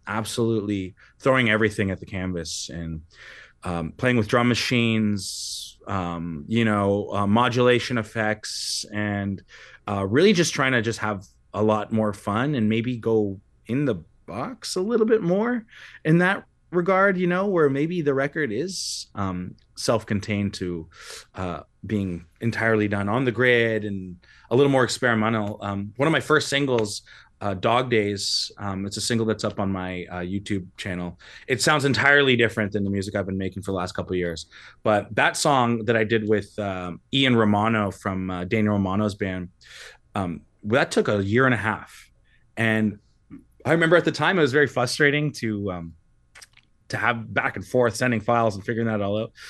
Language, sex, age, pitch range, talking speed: English, male, 30-49, 100-125 Hz, 180 wpm